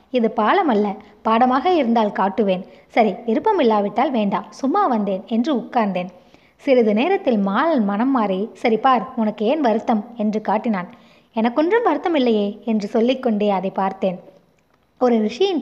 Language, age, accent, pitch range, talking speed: Tamil, 20-39, native, 205-260 Hz, 130 wpm